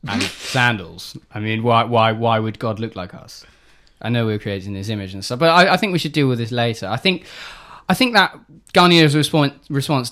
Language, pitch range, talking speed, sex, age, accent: English, 100-125 Hz, 230 wpm, male, 20-39, British